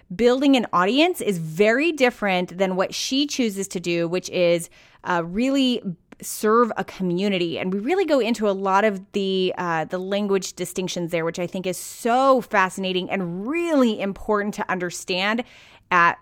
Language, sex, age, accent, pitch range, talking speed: English, female, 30-49, American, 185-240 Hz, 165 wpm